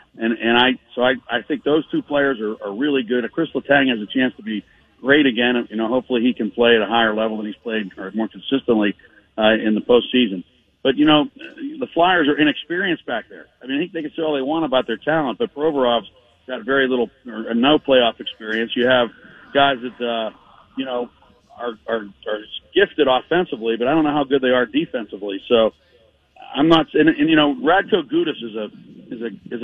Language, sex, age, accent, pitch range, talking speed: English, male, 50-69, American, 115-145 Hz, 225 wpm